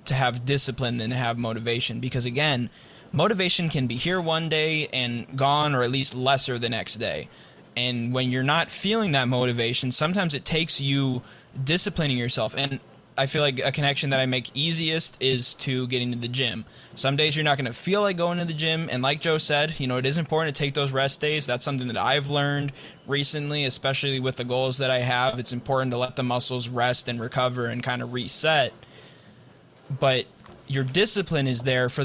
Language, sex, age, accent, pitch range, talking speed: English, male, 20-39, American, 125-145 Hz, 210 wpm